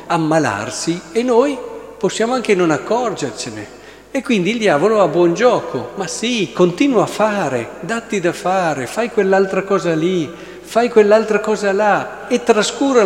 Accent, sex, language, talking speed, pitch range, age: native, male, Italian, 145 wpm, 125-180 Hz, 50-69